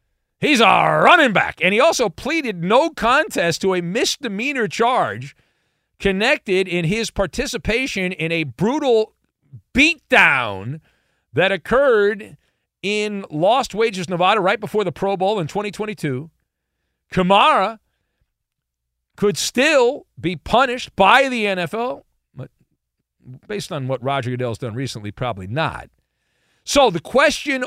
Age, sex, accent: 40-59, male, American